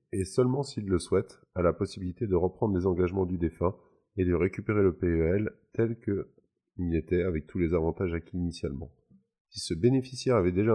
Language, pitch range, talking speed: French, 85-105 Hz, 185 wpm